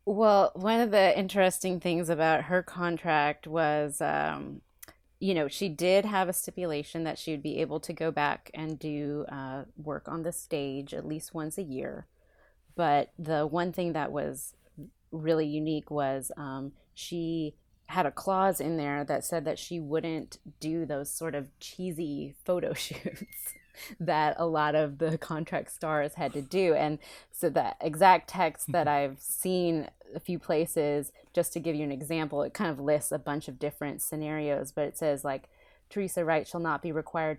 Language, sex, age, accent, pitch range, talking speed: English, female, 20-39, American, 150-180 Hz, 180 wpm